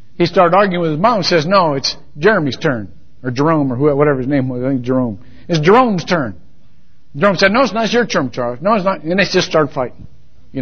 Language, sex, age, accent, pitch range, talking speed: English, male, 60-79, American, 120-200 Hz, 250 wpm